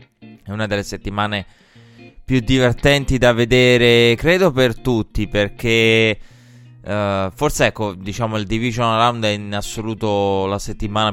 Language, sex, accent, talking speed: Italian, male, native, 130 wpm